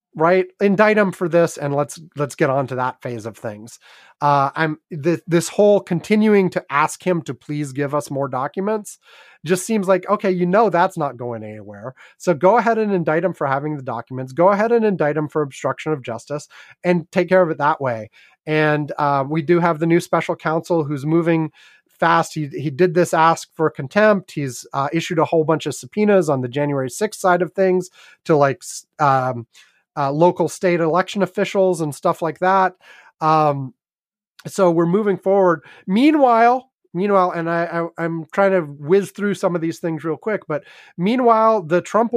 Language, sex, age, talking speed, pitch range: English, male, 30-49, 195 wpm, 150-190 Hz